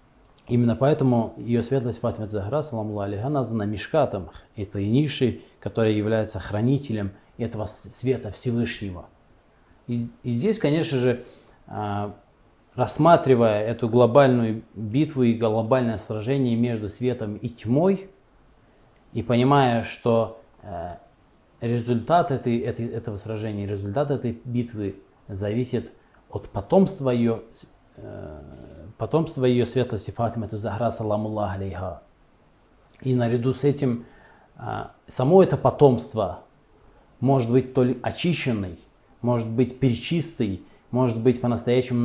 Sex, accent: male, native